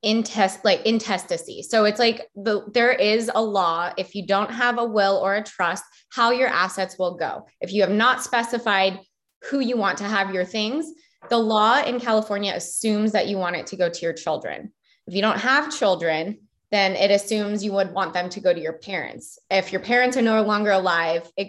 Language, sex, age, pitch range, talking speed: English, female, 20-39, 180-220 Hz, 210 wpm